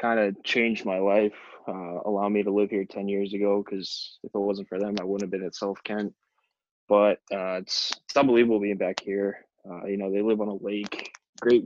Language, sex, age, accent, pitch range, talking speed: English, male, 20-39, American, 100-110 Hz, 220 wpm